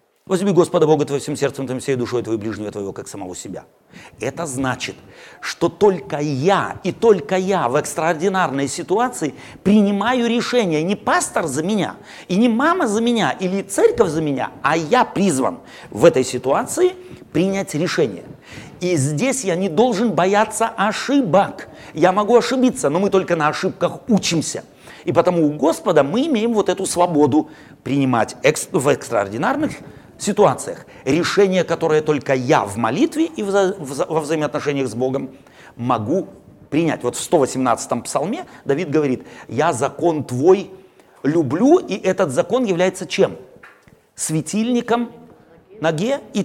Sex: male